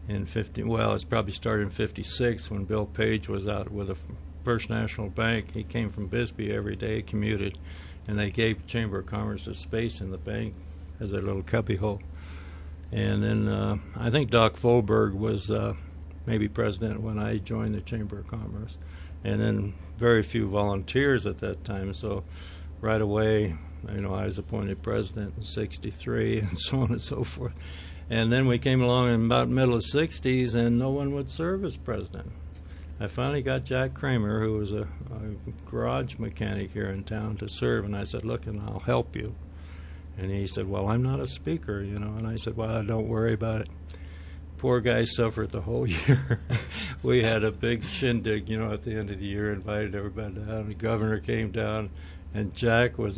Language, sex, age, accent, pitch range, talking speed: English, male, 60-79, American, 95-115 Hz, 195 wpm